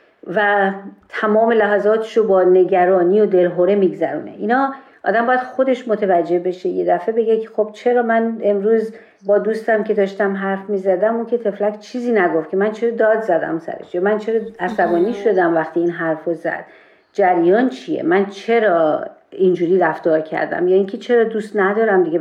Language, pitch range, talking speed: Persian, 180-230 Hz, 165 wpm